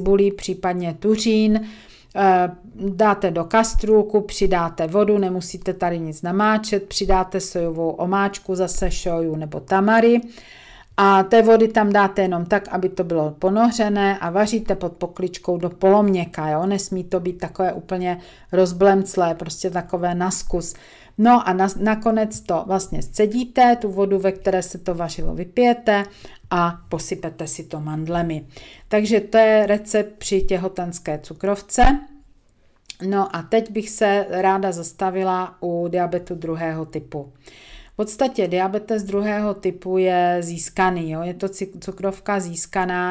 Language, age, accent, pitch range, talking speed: Czech, 40-59, native, 175-195 Hz, 130 wpm